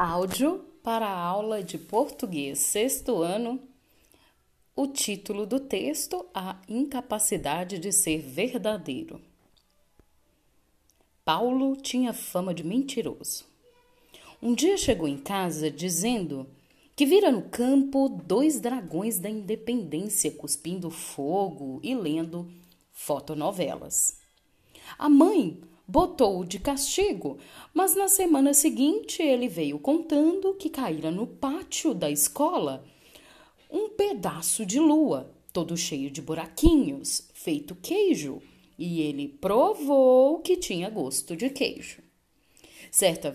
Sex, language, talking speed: female, Portuguese, 110 wpm